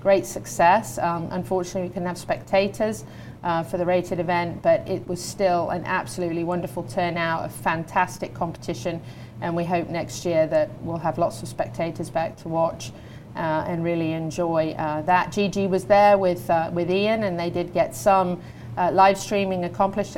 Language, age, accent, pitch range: English, 30-49, British, 160-180 Hz